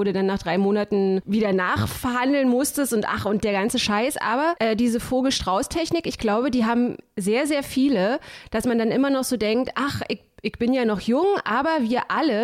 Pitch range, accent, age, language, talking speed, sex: 200-270 Hz, German, 30-49, German, 200 wpm, female